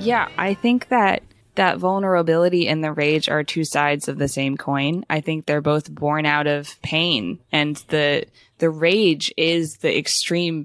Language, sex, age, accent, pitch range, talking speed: English, female, 20-39, American, 145-190 Hz, 175 wpm